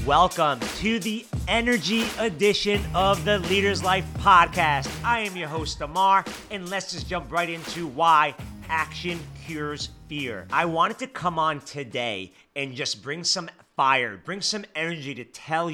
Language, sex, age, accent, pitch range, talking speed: English, male, 30-49, American, 135-190 Hz, 155 wpm